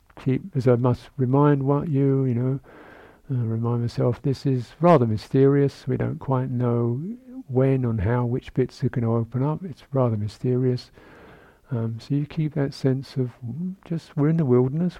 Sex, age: male, 50-69